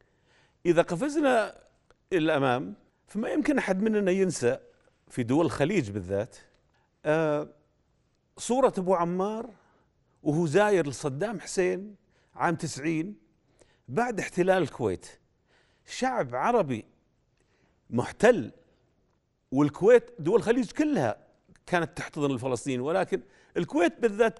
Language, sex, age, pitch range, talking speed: Arabic, male, 40-59, 150-225 Hz, 90 wpm